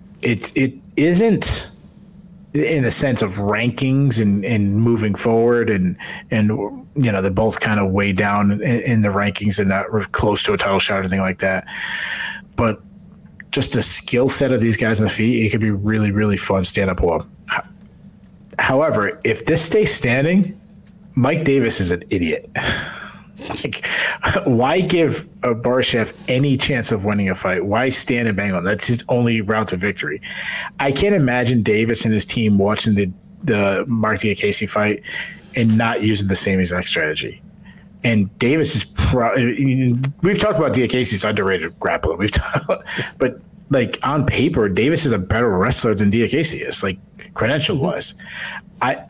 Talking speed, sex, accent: 170 wpm, male, American